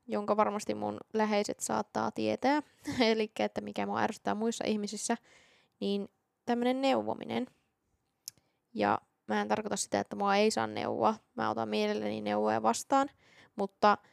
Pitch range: 190-220 Hz